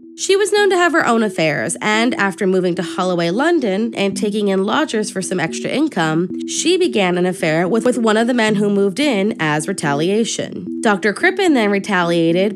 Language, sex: English, female